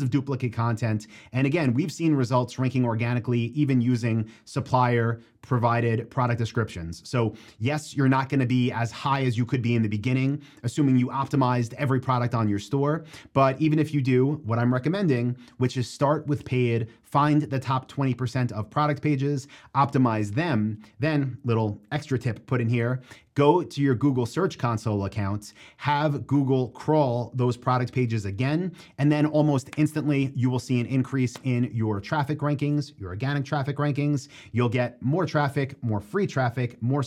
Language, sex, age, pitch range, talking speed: English, male, 30-49, 120-145 Hz, 175 wpm